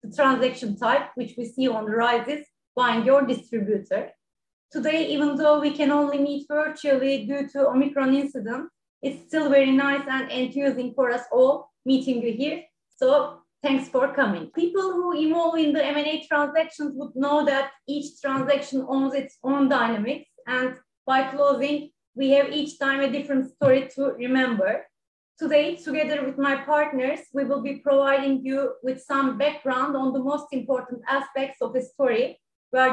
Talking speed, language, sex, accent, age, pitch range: 165 wpm, English, female, Turkish, 30-49, 255-290 Hz